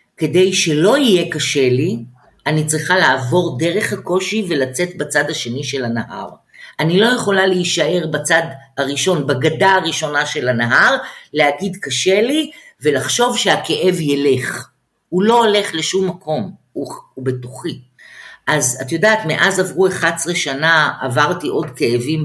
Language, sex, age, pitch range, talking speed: Hebrew, female, 50-69, 150-215 Hz, 130 wpm